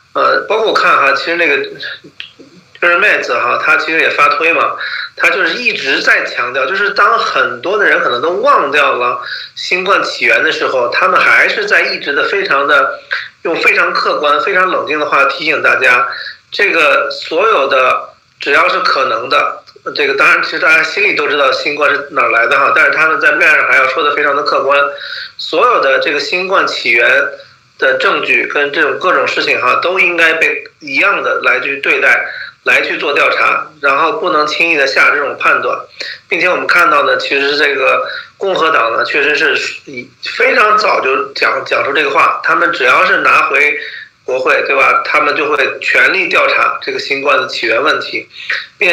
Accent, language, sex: native, Chinese, male